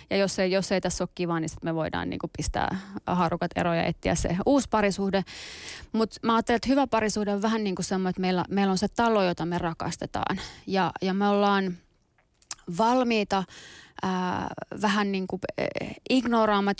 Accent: native